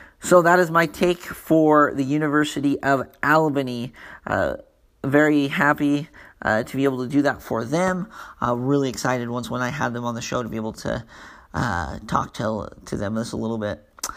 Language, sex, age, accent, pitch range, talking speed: English, male, 40-59, American, 125-145 Hz, 195 wpm